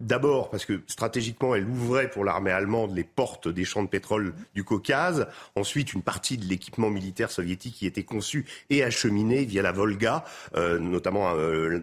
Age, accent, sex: 40-59, French, male